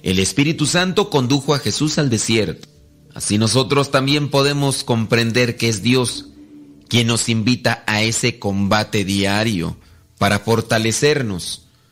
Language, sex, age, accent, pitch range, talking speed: Spanish, male, 40-59, Mexican, 110-145 Hz, 125 wpm